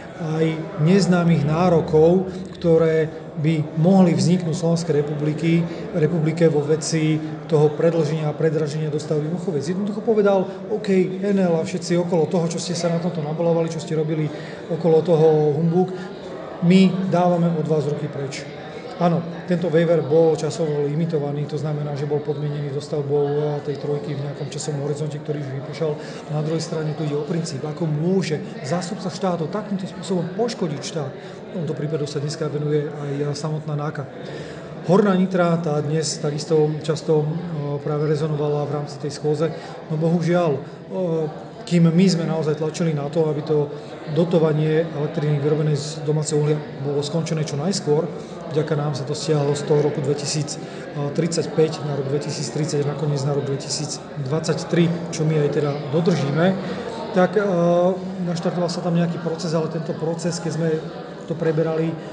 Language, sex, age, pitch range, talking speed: Slovak, male, 30-49, 150-175 Hz, 155 wpm